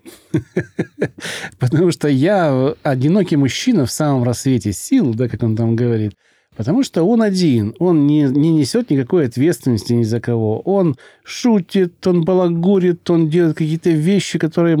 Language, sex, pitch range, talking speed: Russian, male, 125-165 Hz, 145 wpm